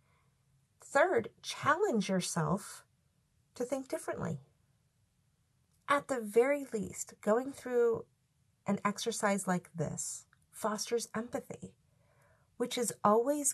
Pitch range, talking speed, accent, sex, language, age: 165-235 Hz, 95 wpm, American, female, English, 40-59